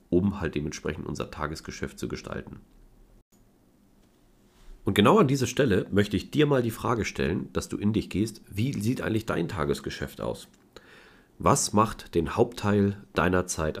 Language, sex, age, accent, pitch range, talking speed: German, male, 40-59, German, 75-100 Hz, 155 wpm